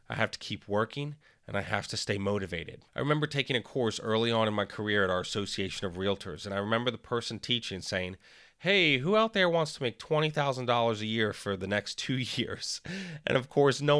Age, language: 30-49, English